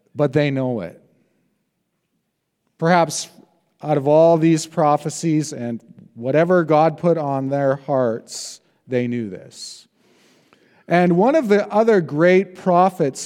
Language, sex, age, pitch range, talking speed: English, male, 40-59, 130-180 Hz, 120 wpm